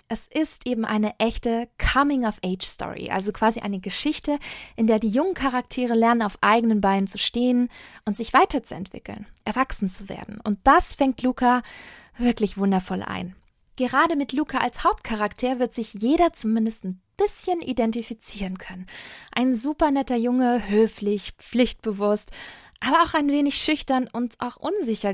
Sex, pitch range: female, 210-265 Hz